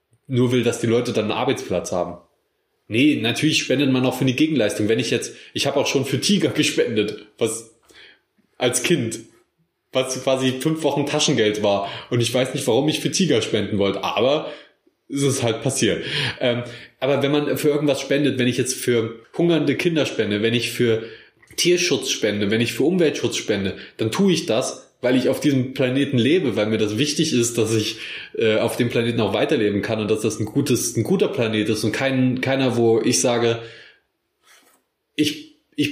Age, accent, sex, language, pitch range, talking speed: 20-39, German, male, German, 115-145 Hz, 190 wpm